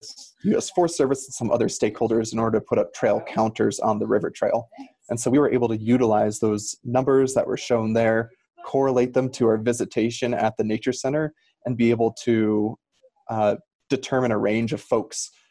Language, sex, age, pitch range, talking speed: English, male, 20-39, 110-135 Hz, 195 wpm